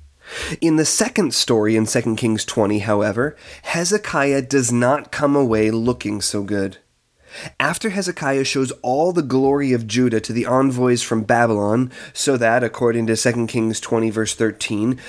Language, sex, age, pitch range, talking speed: English, male, 30-49, 115-140 Hz, 155 wpm